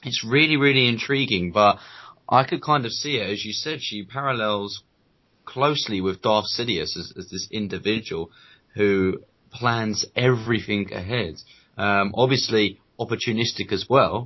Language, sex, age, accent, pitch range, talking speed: English, male, 20-39, British, 95-120 Hz, 140 wpm